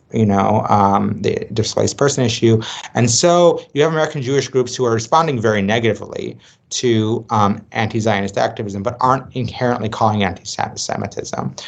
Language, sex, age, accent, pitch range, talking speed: English, male, 30-49, American, 100-115 Hz, 145 wpm